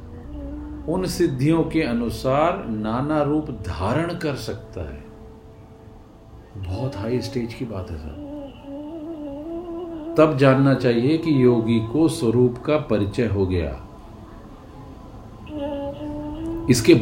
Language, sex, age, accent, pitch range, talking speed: Hindi, male, 50-69, native, 110-150 Hz, 100 wpm